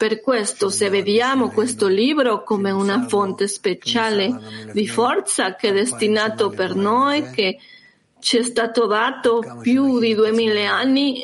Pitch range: 200-250 Hz